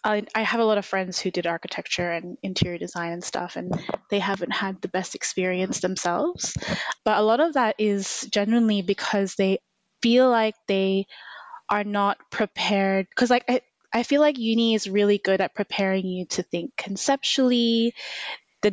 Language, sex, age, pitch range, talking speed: English, female, 20-39, 185-215 Hz, 175 wpm